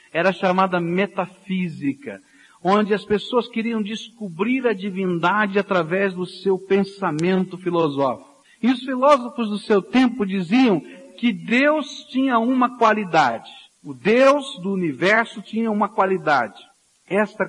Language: Portuguese